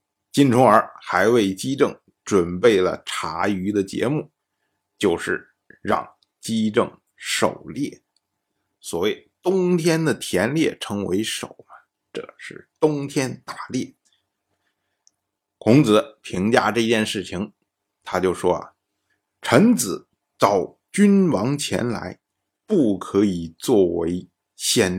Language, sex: Chinese, male